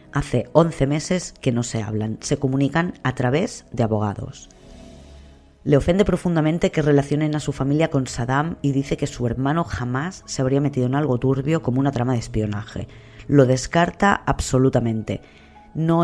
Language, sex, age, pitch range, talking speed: Spanish, female, 20-39, 115-145 Hz, 165 wpm